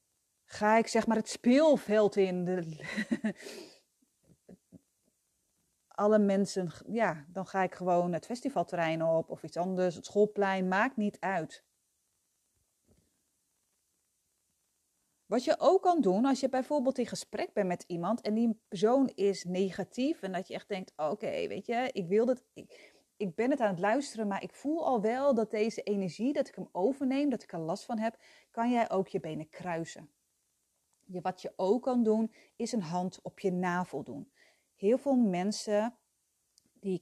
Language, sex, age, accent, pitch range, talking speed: Dutch, female, 30-49, Dutch, 180-225 Hz, 160 wpm